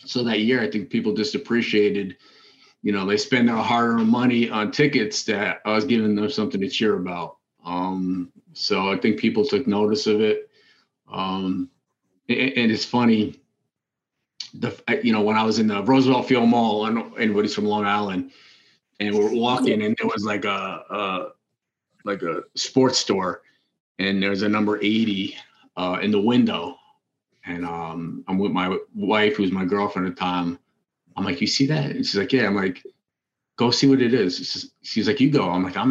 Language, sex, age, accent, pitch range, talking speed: English, male, 30-49, American, 105-135 Hz, 195 wpm